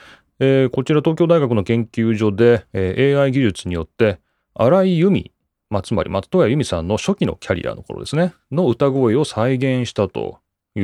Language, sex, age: Japanese, male, 30-49